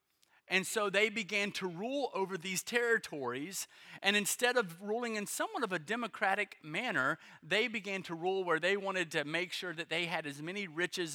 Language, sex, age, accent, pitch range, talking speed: English, male, 30-49, American, 165-200 Hz, 190 wpm